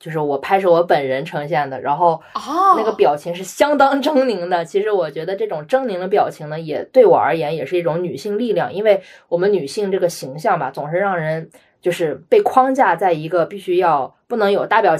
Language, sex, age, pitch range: Chinese, female, 20-39, 165-220 Hz